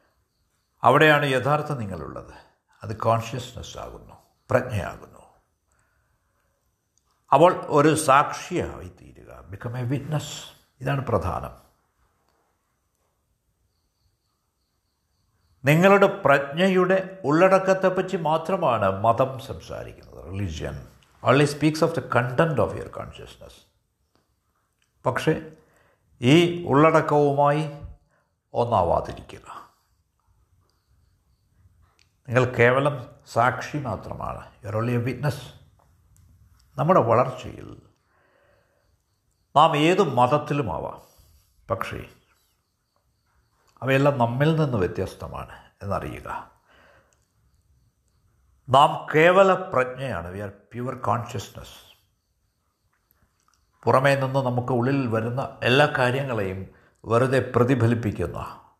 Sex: male